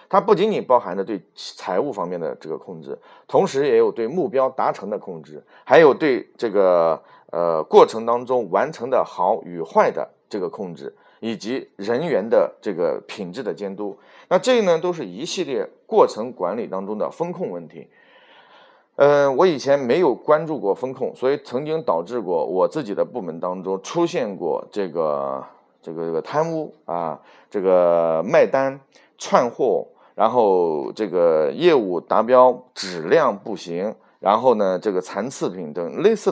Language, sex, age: Chinese, male, 30-49